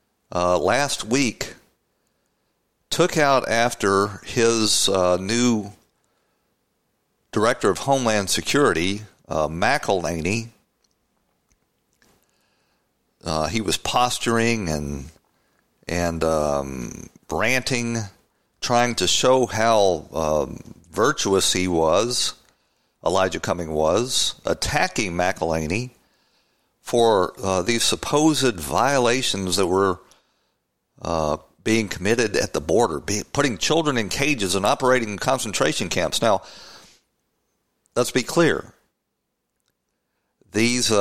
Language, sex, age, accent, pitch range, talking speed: English, male, 50-69, American, 90-120 Hz, 90 wpm